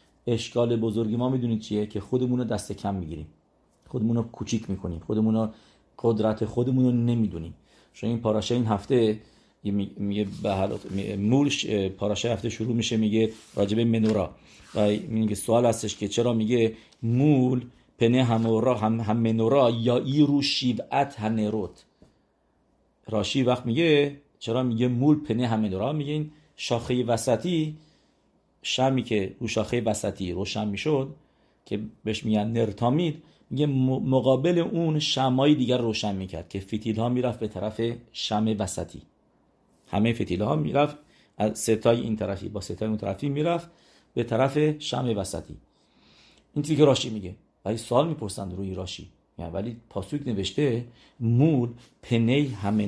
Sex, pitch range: male, 105-125 Hz